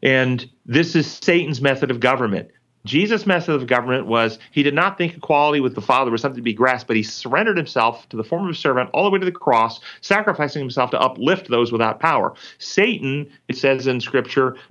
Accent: American